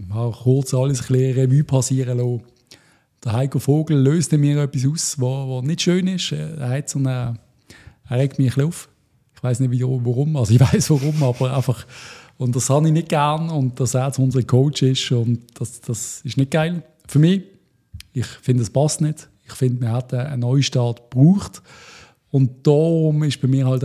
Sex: male